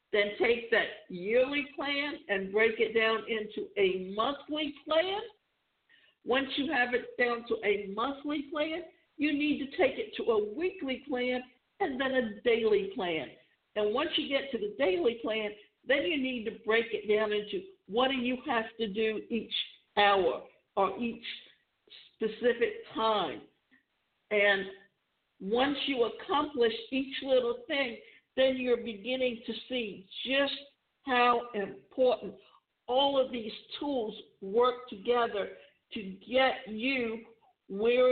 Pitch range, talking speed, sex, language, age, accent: 220-290 Hz, 140 wpm, female, English, 60-79, American